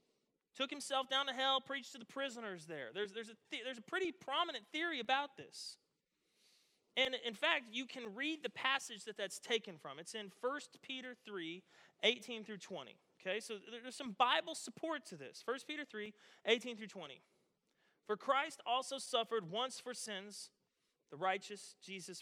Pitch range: 180-255 Hz